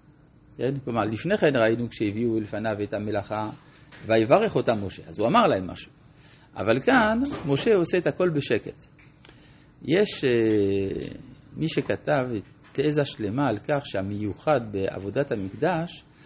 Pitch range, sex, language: 115-155 Hz, male, Hebrew